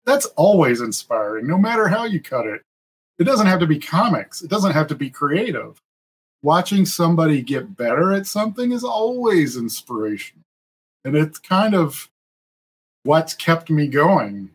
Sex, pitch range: male, 120-165 Hz